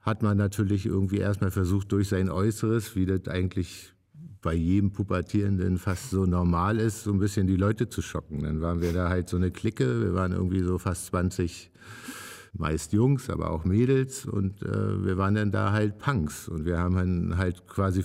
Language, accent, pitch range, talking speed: German, German, 90-105 Hz, 195 wpm